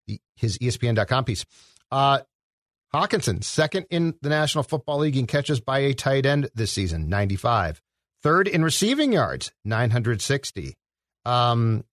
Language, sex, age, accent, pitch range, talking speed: English, male, 40-59, American, 110-135 Hz, 130 wpm